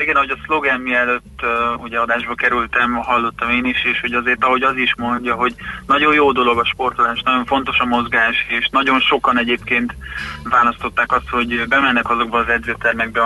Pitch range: 115-130 Hz